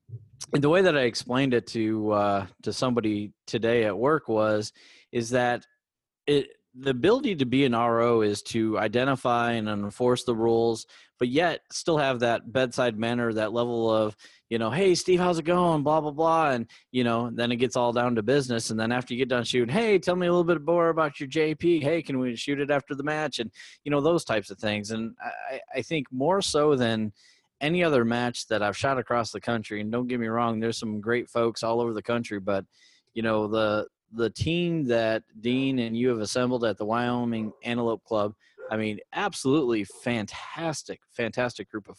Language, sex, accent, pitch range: English, male, American, 110-135 Hz